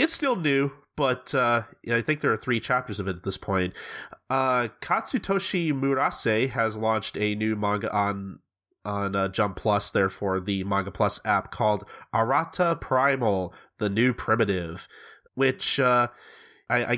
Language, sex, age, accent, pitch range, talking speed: English, male, 30-49, American, 105-135 Hz, 150 wpm